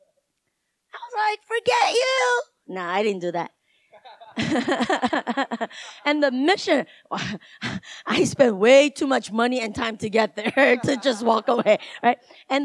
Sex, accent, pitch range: female, American, 205-290 Hz